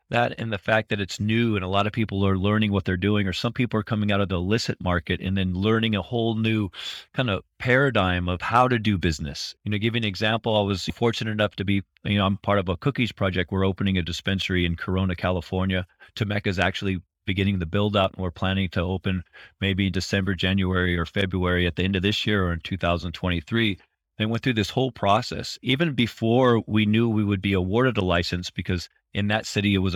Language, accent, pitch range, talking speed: English, American, 95-110 Hz, 230 wpm